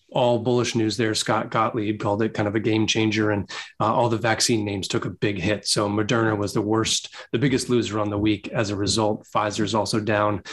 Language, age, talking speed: English, 30-49, 235 wpm